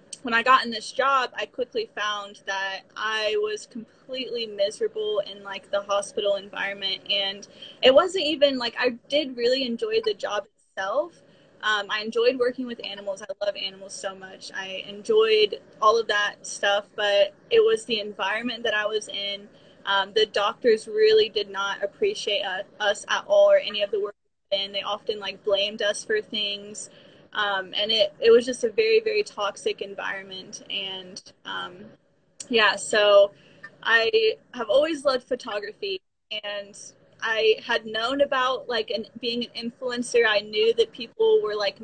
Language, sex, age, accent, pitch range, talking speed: English, female, 10-29, American, 200-290 Hz, 170 wpm